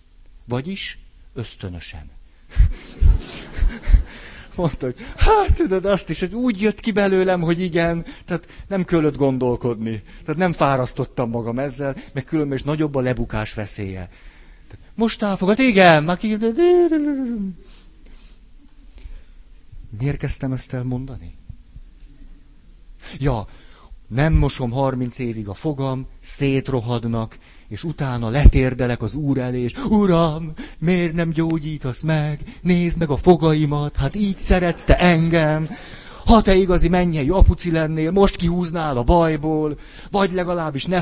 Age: 60-79